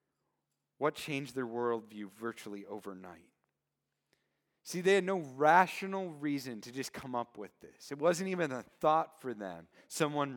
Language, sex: English, male